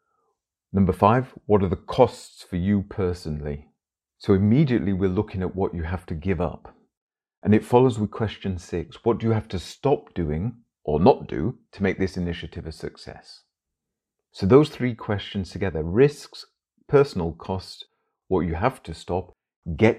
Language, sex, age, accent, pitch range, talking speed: English, male, 40-59, British, 90-110 Hz, 170 wpm